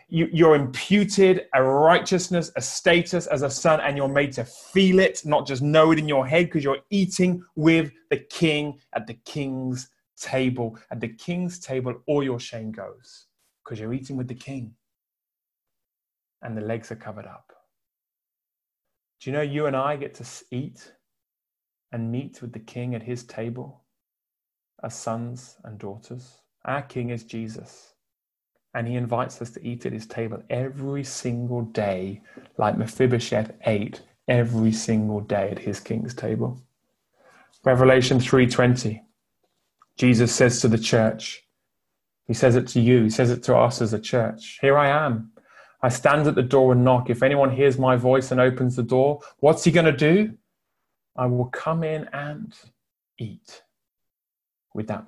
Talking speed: 165 wpm